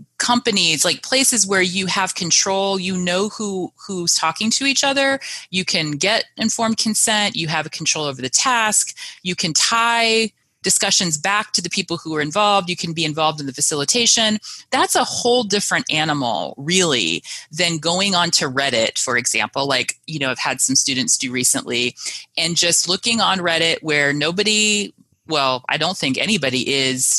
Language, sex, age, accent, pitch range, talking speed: English, female, 30-49, American, 145-200 Hz, 175 wpm